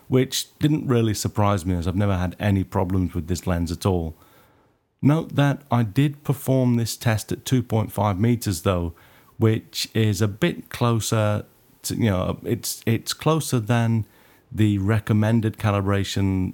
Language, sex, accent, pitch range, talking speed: English, male, British, 100-120 Hz, 160 wpm